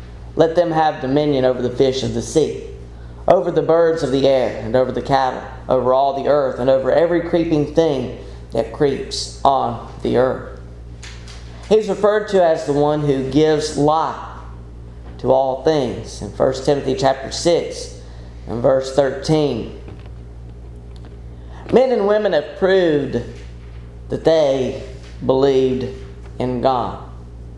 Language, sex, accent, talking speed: English, male, American, 140 wpm